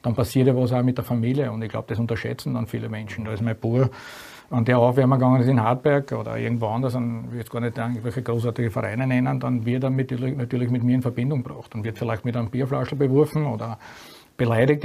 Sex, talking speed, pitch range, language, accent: male, 240 wpm, 120-150 Hz, German, Austrian